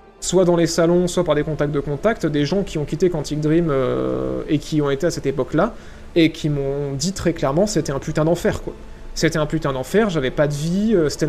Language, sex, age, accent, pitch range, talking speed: French, male, 30-49, French, 150-190 Hz, 240 wpm